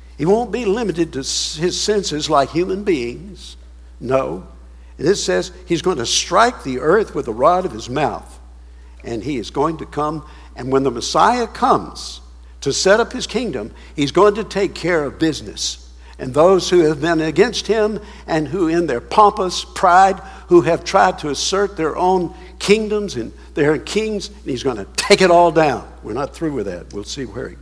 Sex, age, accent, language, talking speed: male, 60-79, American, English, 195 wpm